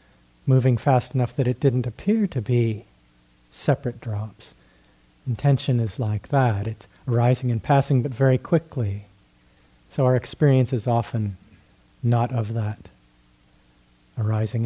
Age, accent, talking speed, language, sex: 40-59, American, 125 wpm, English, male